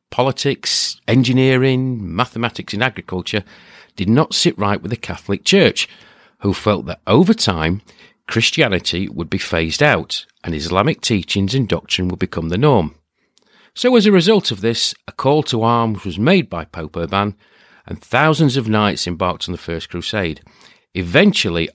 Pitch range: 85-130 Hz